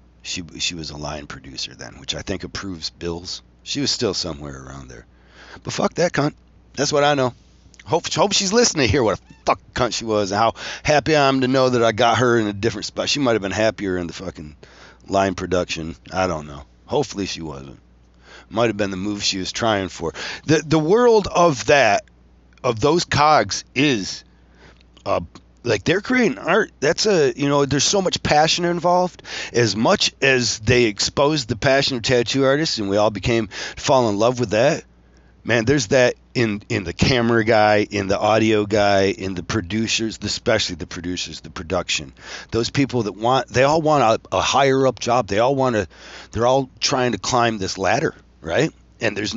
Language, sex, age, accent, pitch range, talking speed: English, male, 40-59, American, 85-125 Hz, 205 wpm